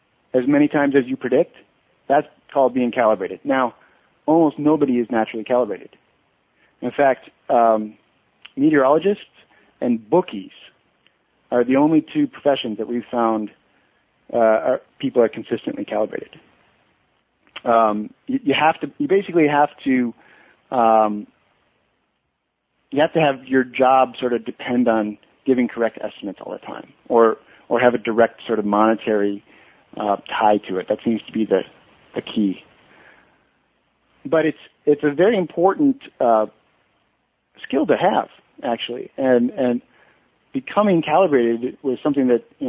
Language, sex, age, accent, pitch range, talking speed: English, male, 40-59, American, 110-145 Hz, 140 wpm